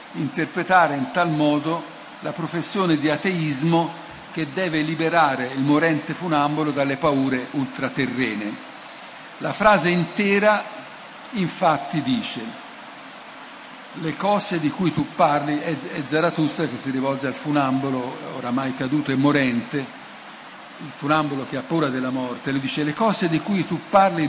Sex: male